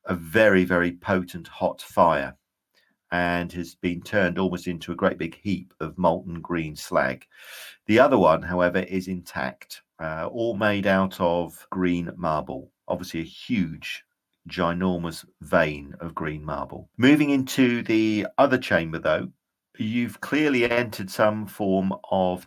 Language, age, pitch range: English, 50-69, 85-100 Hz